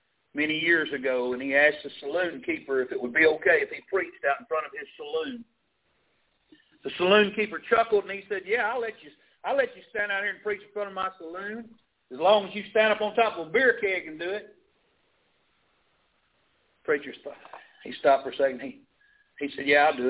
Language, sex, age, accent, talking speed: English, male, 50-69, American, 225 wpm